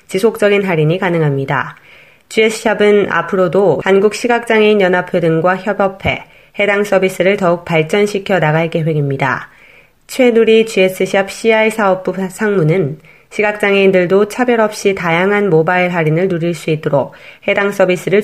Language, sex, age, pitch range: Korean, female, 20-39, 165-210 Hz